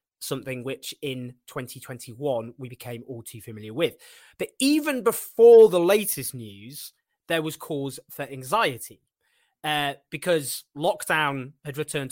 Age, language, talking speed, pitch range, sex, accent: 20-39, English, 130 wpm, 130-170 Hz, male, British